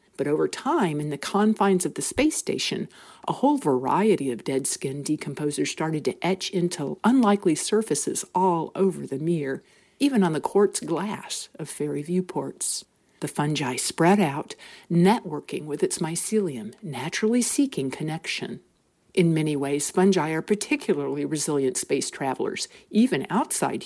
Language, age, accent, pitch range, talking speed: English, 50-69, American, 145-200 Hz, 140 wpm